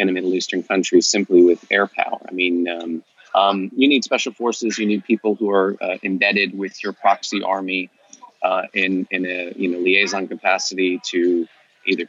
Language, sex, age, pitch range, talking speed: English, male, 30-49, 95-125 Hz, 190 wpm